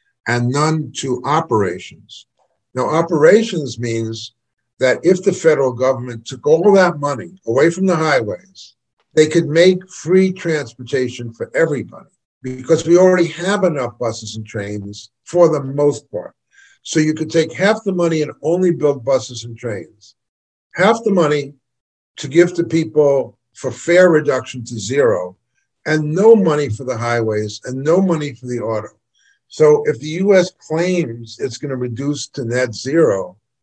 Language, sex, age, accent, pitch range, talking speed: English, male, 50-69, American, 125-170 Hz, 155 wpm